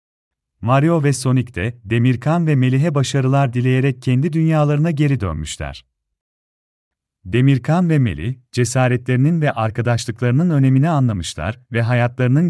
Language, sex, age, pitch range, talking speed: Turkish, male, 40-59, 115-145 Hz, 110 wpm